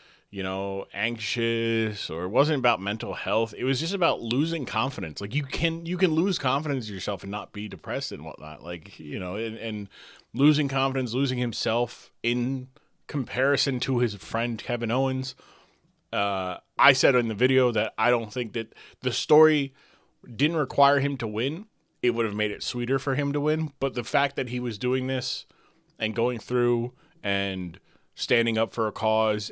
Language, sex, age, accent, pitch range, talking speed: English, male, 30-49, American, 115-140 Hz, 185 wpm